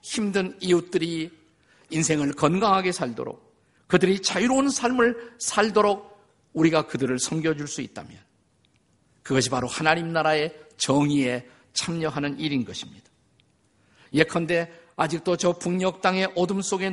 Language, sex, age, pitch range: Korean, male, 50-69, 155-205 Hz